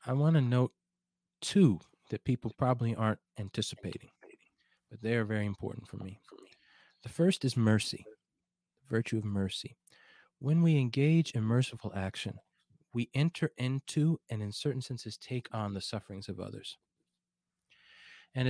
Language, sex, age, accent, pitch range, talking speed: English, male, 40-59, American, 105-145 Hz, 145 wpm